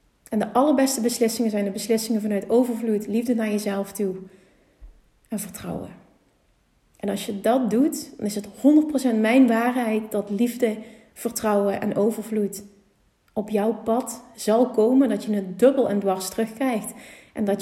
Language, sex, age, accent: Dutch, female, 30-49, Dutch